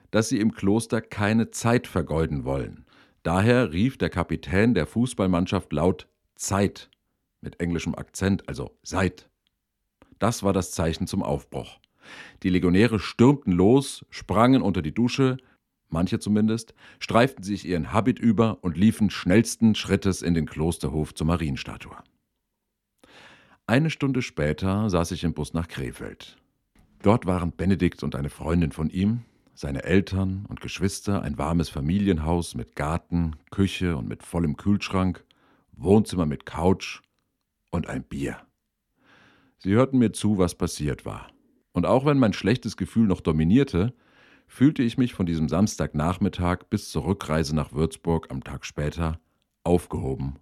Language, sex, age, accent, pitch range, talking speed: German, male, 50-69, German, 80-110 Hz, 140 wpm